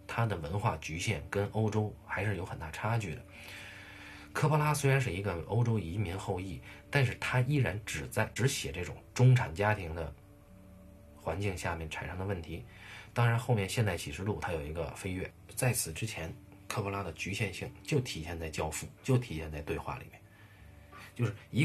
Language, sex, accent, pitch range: Chinese, male, native, 90-110 Hz